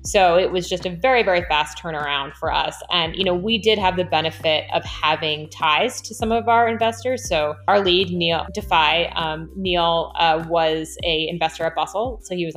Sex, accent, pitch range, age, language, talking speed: female, American, 160-210 Hz, 20-39, English, 205 wpm